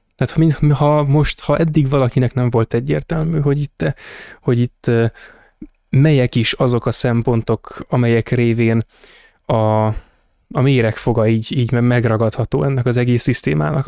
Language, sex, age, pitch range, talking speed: Hungarian, male, 20-39, 115-135 Hz, 135 wpm